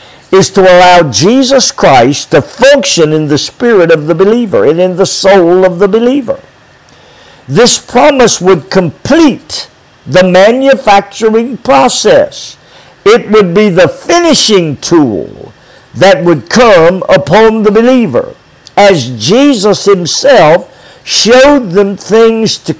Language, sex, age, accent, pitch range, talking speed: English, male, 50-69, American, 165-230 Hz, 120 wpm